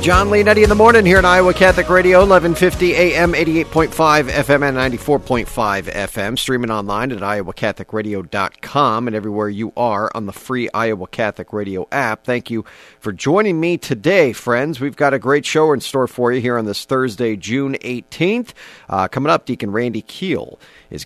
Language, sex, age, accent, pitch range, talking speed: English, male, 40-59, American, 110-155 Hz, 175 wpm